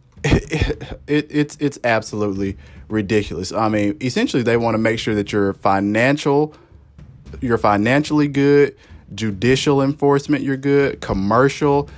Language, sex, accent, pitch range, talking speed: English, male, American, 105-150 Hz, 125 wpm